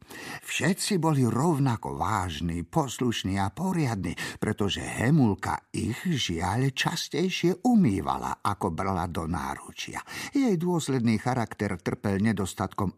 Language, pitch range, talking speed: Slovak, 110-175 Hz, 100 wpm